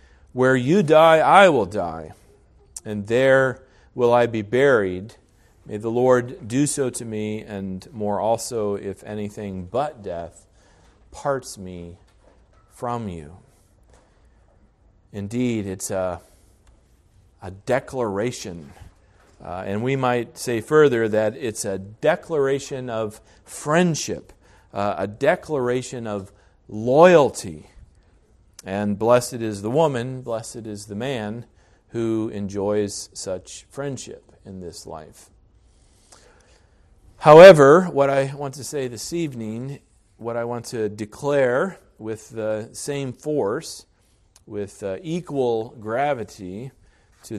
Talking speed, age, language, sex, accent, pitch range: 115 wpm, 40-59, English, male, American, 95-130 Hz